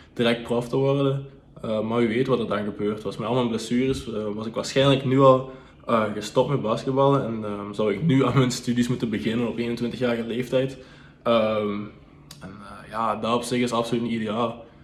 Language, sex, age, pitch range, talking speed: Dutch, male, 20-39, 105-125 Hz, 200 wpm